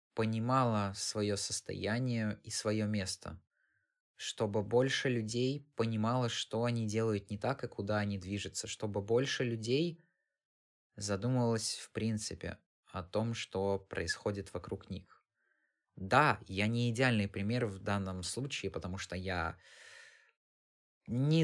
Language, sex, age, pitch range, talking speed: Russian, male, 20-39, 95-115 Hz, 120 wpm